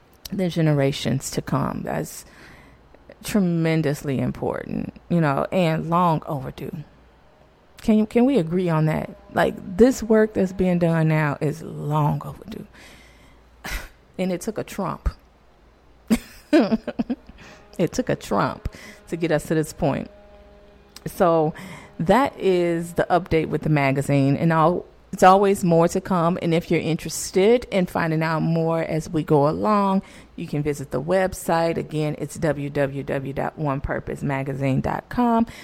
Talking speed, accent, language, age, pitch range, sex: 135 wpm, American, English, 30-49, 150-190 Hz, female